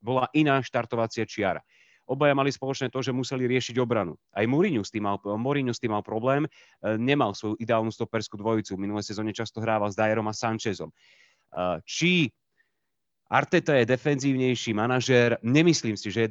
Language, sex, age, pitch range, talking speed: Czech, male, 30-49, 110-130 Hz, 160 wpm